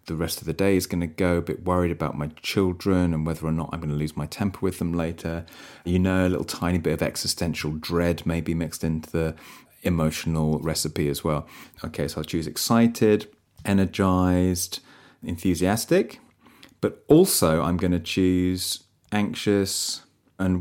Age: 30-49